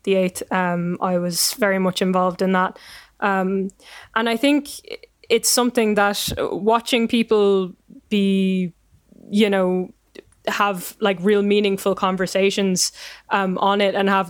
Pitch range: 185-205 Hz